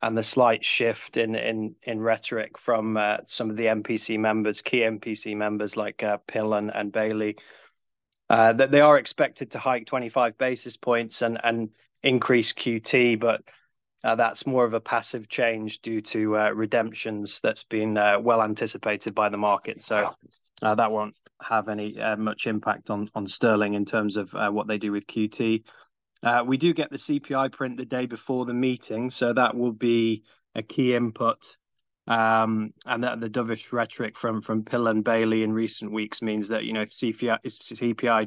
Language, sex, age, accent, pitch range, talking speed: English, male, 20-39, British, 105-120 Hz, 185 wpm